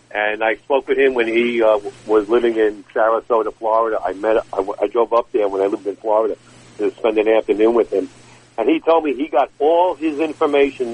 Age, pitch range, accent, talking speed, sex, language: 50-69, 110-145 Hz, American, 220 wpm, male, English